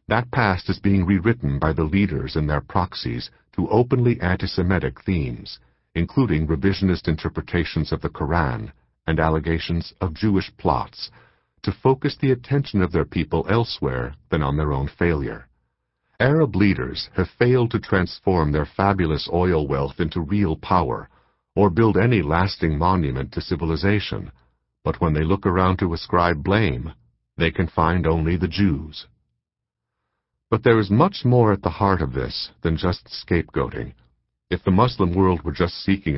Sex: male